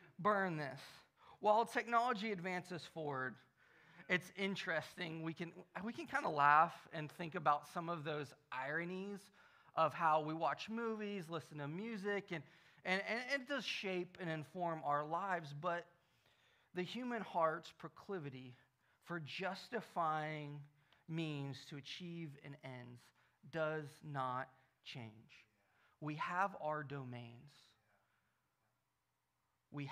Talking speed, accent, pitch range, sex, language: 120 wpm, American, 145-190 Hz, male, English